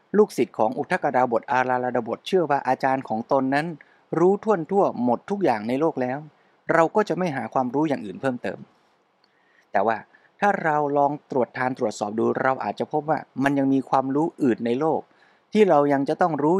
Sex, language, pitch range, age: male, Thai, 130-155 Hz, 20-39